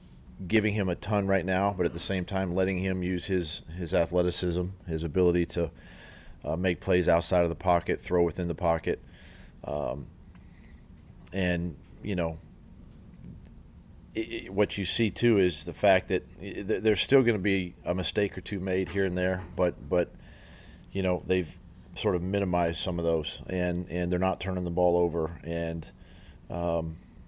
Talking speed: 175 wpm